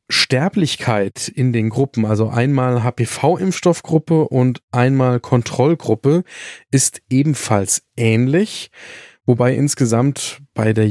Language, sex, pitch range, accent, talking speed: German, male, 115-140 Hz, German, 95 wpm